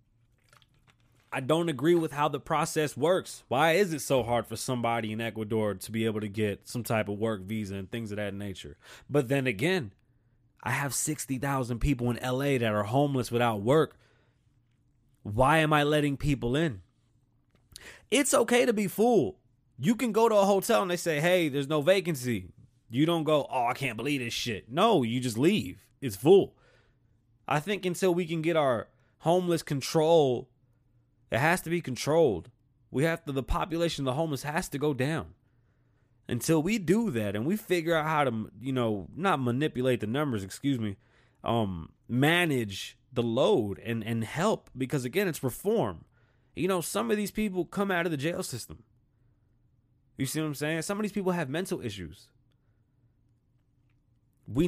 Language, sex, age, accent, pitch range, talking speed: English, male, 20-39, American, 120-160 Hz, 180 wpm